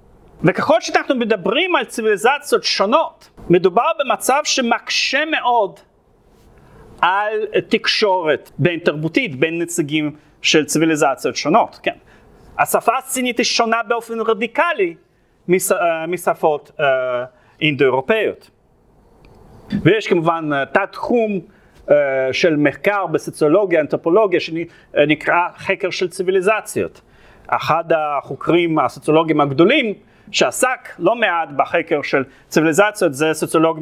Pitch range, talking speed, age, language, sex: 155-235 Hz, 95 wpm, 40-59, Hebrew, male